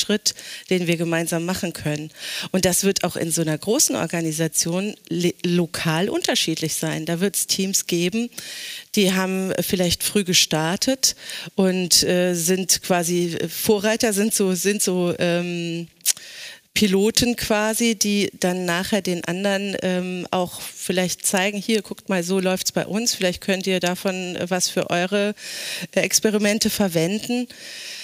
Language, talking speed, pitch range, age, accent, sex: German, 145 wpm, 175-205 Hz, 40-59, German, female